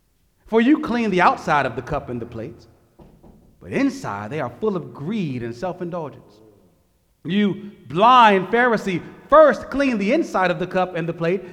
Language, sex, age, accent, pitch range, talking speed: English, male, 30-49, American, 160-240 Hz, 170 wpm